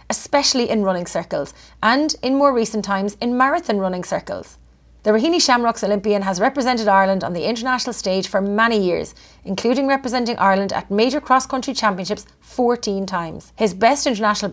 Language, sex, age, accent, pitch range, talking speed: English, female, 30-49, Irish, 195-245 Hz, 160 wpm